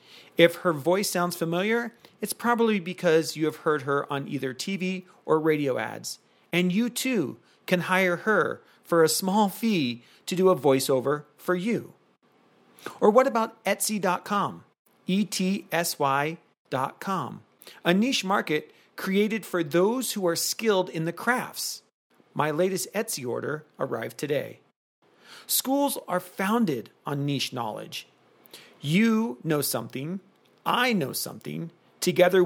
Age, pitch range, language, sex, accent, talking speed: 40-59, 155-205 Hz, English, male, American, 130 wpm